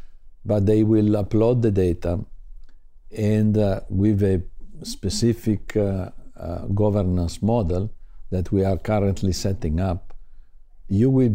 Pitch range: 90-110 Hz